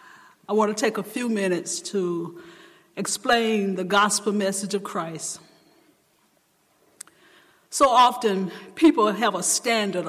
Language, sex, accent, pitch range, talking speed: English, female, American, 195-245 Hz, 120 wpm